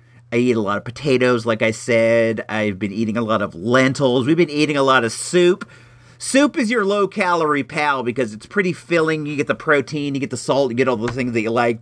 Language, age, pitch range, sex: English, 40-59, 115-150 Hz, male